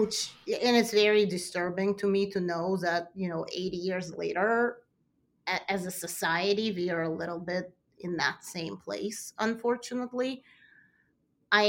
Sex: female